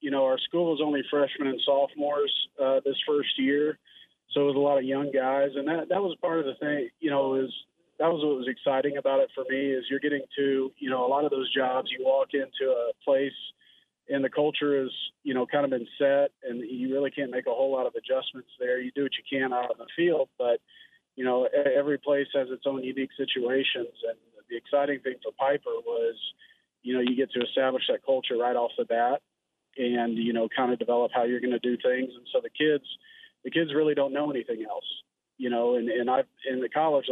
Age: 40-59